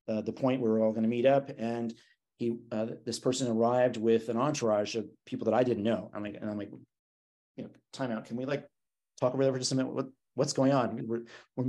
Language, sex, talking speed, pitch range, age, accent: English, male, 250 wpm, 110-130 Hz, 30-49, American